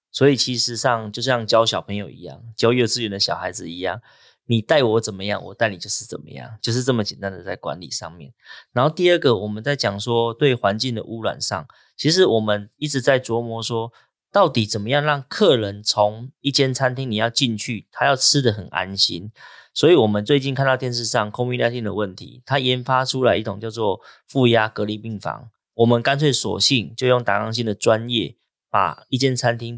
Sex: male